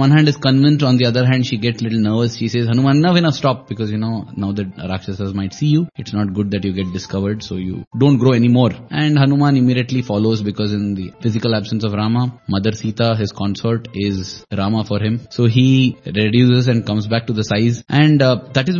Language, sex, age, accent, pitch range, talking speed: English, male, 10-29, Indian, 105-130 Hz, 225 wpm